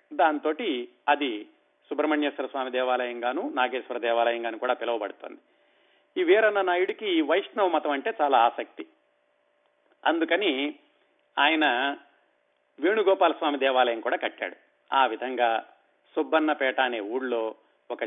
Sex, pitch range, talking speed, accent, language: male, 125-180 Hz, 105 wpm, native, Telugu